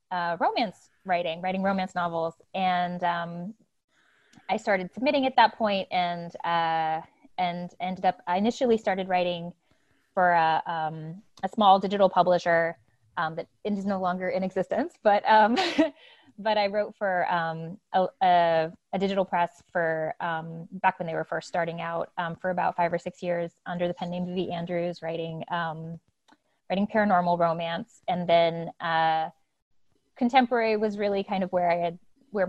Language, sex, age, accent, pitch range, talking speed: English, female, 20-39, American, 170-195 Hz, 165 wpm